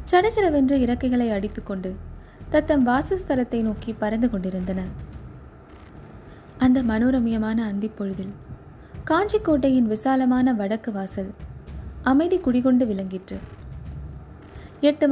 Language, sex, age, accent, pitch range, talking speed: Tamil, female, 20-39, native, 205-275 Hz, 70 wpm